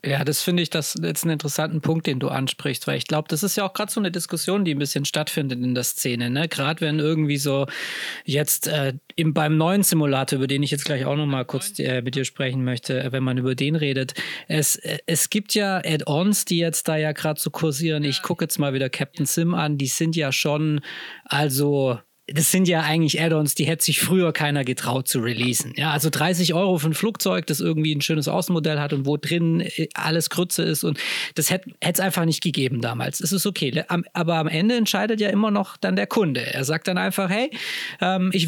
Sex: male